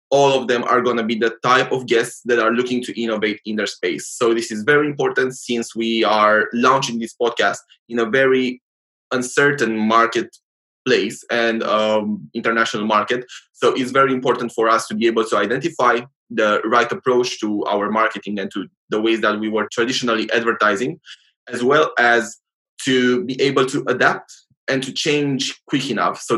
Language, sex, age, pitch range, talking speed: English, male, 20-39, 110-125 Hz, 180 wpm